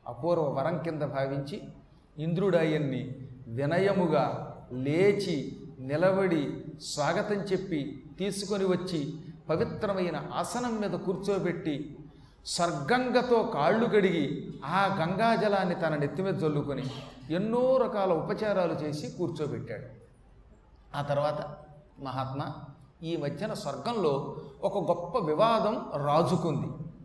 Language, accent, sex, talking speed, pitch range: Telugu, native, male, 90 wpm, 150-200 Hz